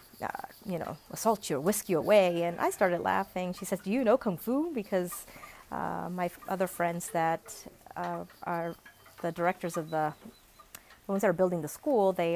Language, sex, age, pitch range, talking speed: English, female, 30-49, 165-210 Hz, 200 wpm